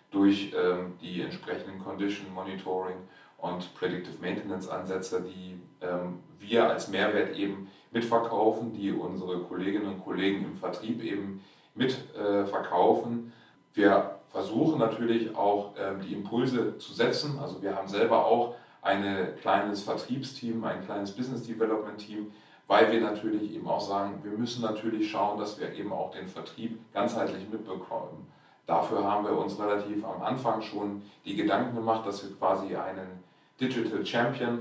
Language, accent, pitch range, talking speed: German, German, 95-115 Hz, 145 wpm